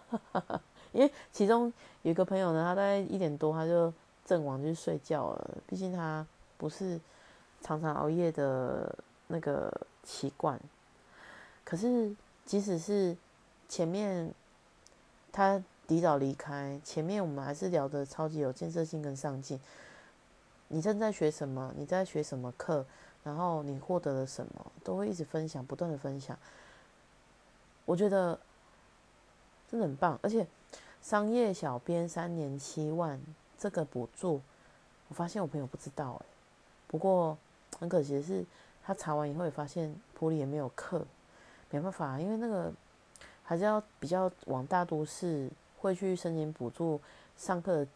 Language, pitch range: Chinese, 145-185 Hz